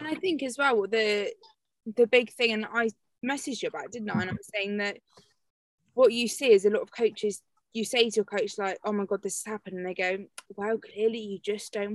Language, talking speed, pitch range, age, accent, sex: English, 245 wpm, 205-270 Hz, 20-39, British, female